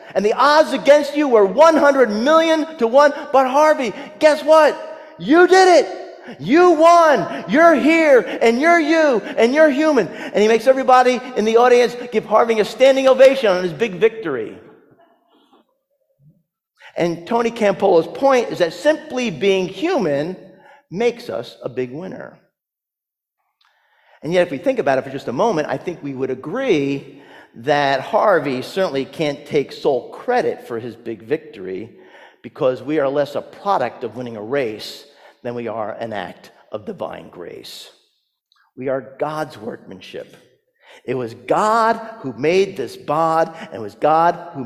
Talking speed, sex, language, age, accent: 160 wpm, male, English, 40-59, American